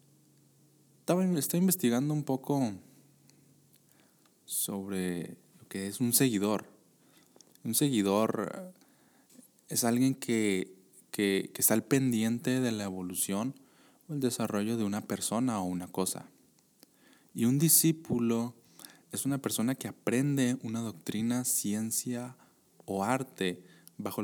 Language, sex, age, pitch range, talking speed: Spanish, male, 20-39, 100-130 Hz, 115 wpm